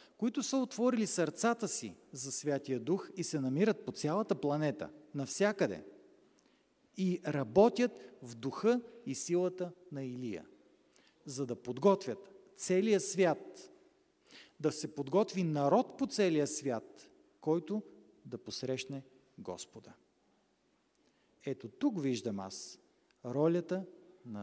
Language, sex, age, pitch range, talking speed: Bulgarian, male, 40-59, 135-200 Hz, 110 wpm